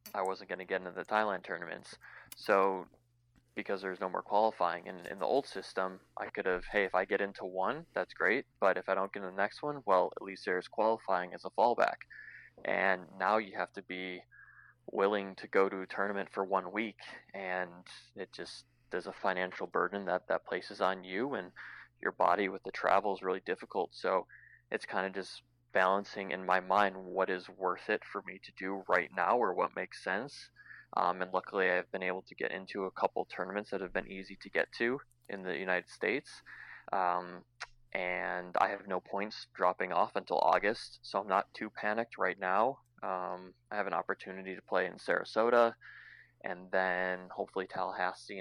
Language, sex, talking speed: English, male, 200 wpm